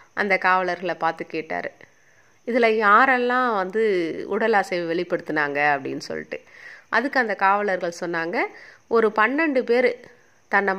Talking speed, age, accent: 110 wpm, 30-49, native